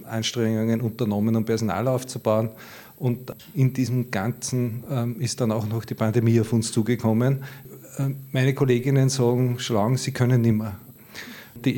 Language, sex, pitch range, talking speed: German, male, 115-130 Hz, 140 wpm